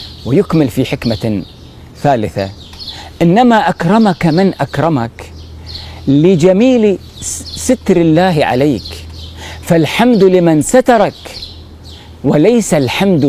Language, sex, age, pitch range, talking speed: Arabic, male, 40-59, 105-175 Hz, 75 wpm